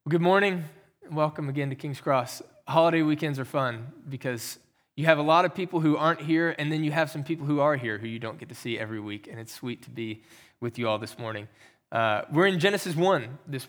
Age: 20-39